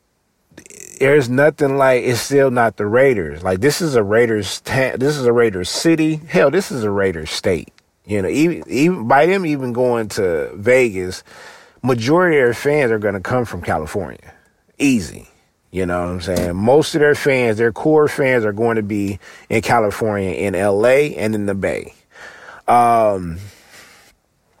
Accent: American